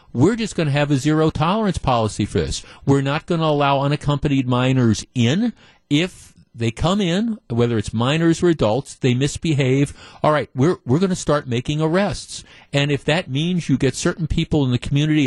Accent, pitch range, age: American, 120-160 Hz, 50-69